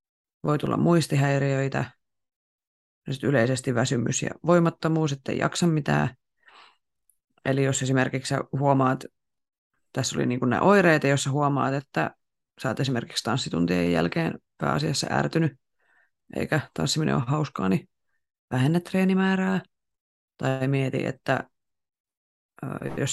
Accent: native